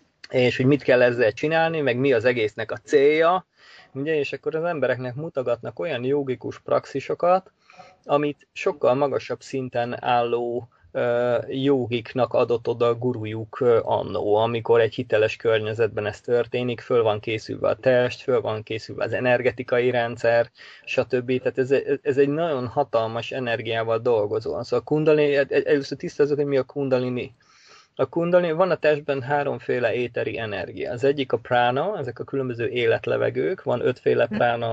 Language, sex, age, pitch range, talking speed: Hungarian, male, 20-39, 120-150 Hz, 150 wpm